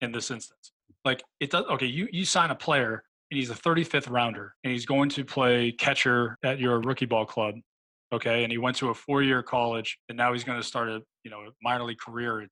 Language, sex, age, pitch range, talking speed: English, male, 20-39, 115-130 Hz, 235 wpm